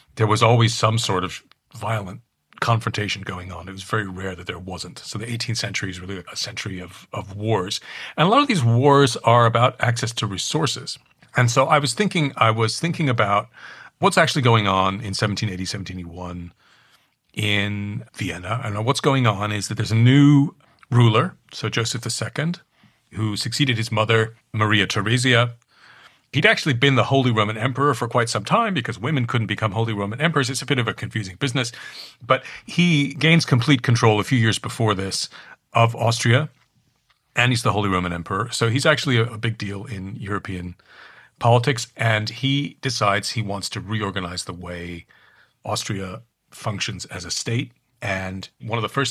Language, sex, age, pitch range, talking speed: English, male, 40-59, 105-130 Hz, 180 wpm